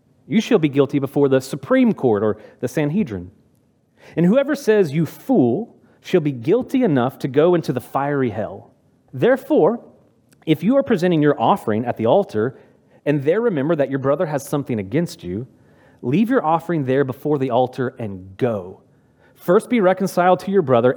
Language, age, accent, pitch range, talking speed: English, 30-49, American, 130-180 Hz, 175 wpm